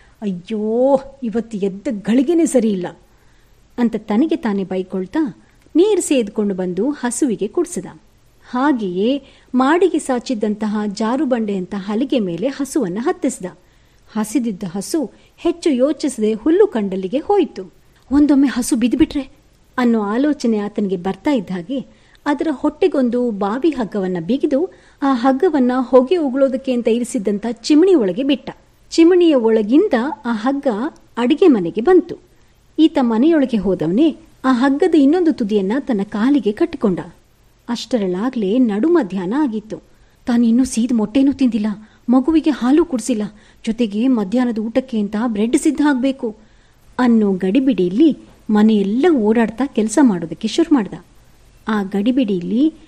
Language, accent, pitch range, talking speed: Kannada, native, 215-290 Hz, 110 wpm